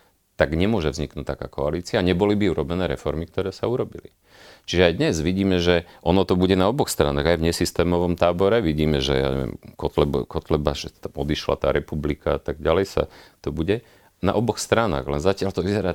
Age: 40-59